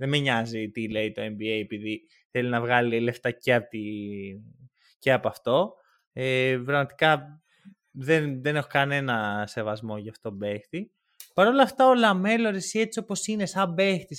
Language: Greek